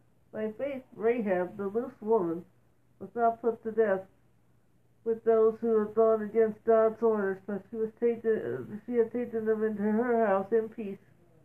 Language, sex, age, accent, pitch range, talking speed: English, female, 60-79, American, 200-230 Hz, 170 wpm